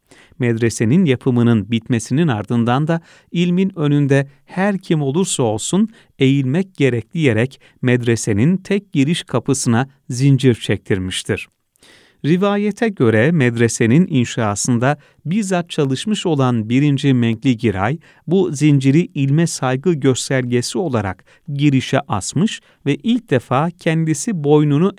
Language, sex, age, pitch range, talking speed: Turkish, male, 40-59, 120-165 Hz, 105 wpm